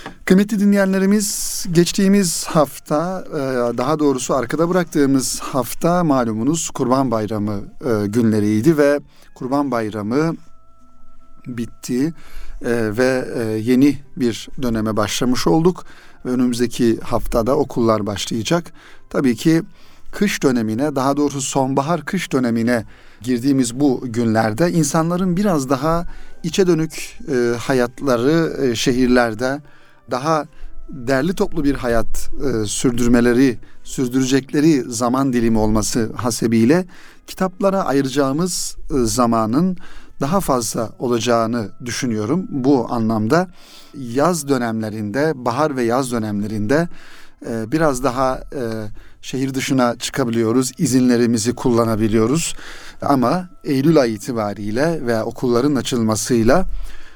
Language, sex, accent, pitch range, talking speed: Turkish, male, native, 115-155 Hz, 95 wpm